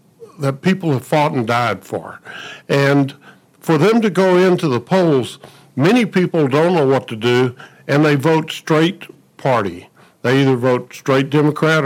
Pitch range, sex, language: 115-150 Hz, male, English